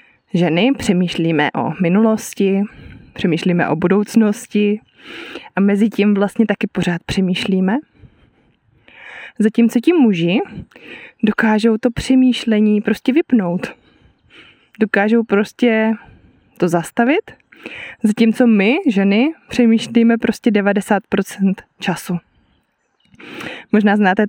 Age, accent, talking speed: 20-39, native, 85 wpm